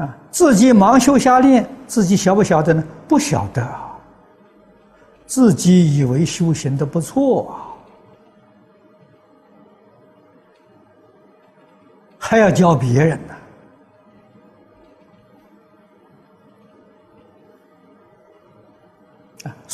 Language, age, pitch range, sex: Chinese, 60-79, 140-195 Hz, male